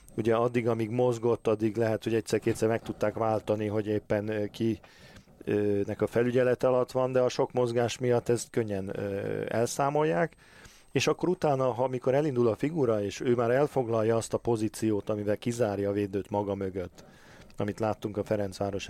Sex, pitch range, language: male, 100-120 Hz, Hungarian